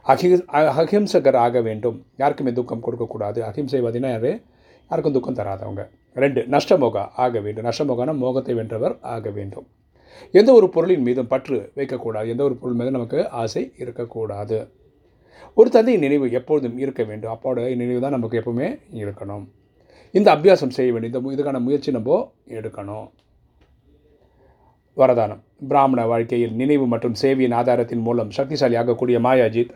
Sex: male